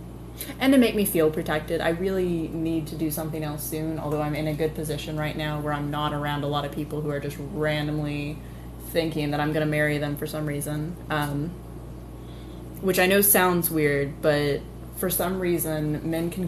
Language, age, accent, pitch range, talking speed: English, 20-39, American, 145-165 Hz, 200 wpm